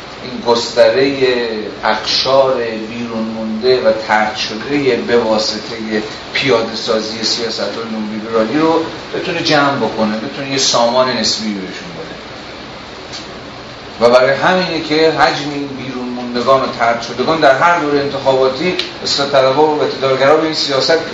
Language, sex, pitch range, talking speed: Persian, male, 125-155 Hz, 125 wpm